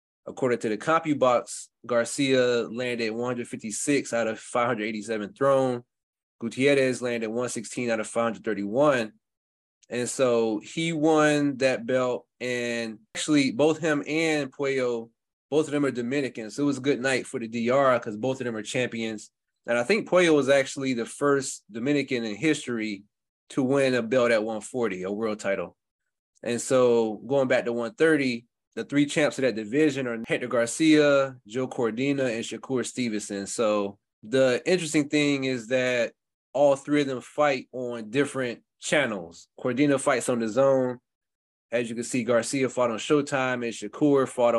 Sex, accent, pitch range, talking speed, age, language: male, American, 115-140 Hz, 160 wpm, 20-39, English